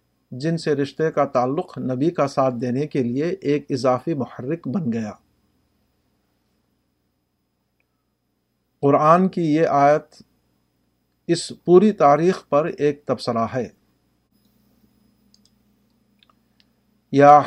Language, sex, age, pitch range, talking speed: Urdu, male, 50-69, 120-150 Hz, 95 wpm